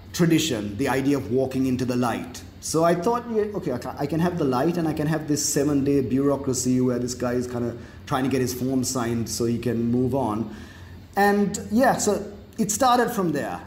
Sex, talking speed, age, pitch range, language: male, 220 wpm, 30-49, 115-150 Hz, English